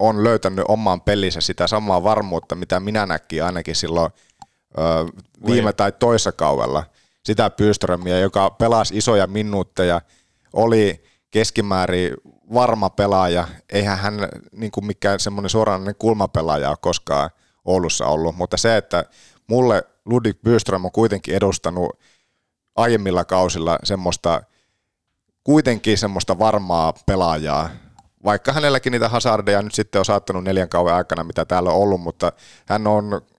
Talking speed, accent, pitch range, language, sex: 125 wpm, native, 90-105 Hz, Finnish, male